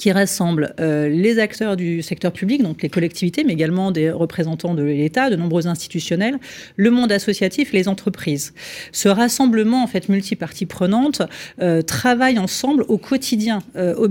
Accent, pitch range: French, 180-225 Hz